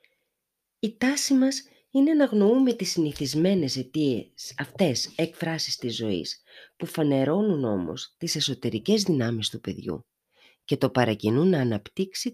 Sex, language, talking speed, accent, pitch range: female, Greek, 125 wpm, native, 115-175 Hz